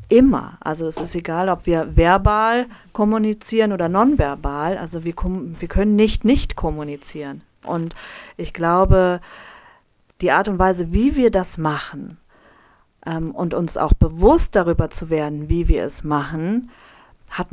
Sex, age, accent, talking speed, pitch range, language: female, 40-59, German, 145 wpm, 170-215 Hz, German